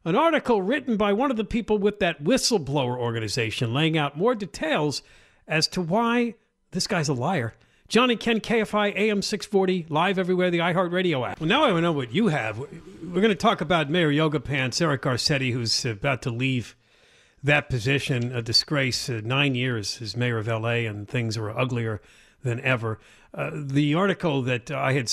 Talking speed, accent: 180 wpm, American